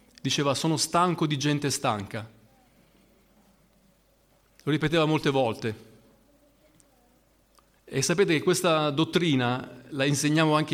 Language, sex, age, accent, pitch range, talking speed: Italian, male, 30-49, native, 115-150 Hz, 100 wpm